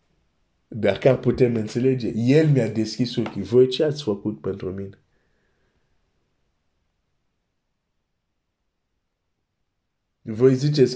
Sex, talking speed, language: male, 90 wpm, Romanian